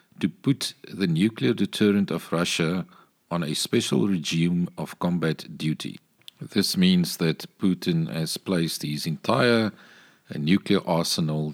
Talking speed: 125 wpm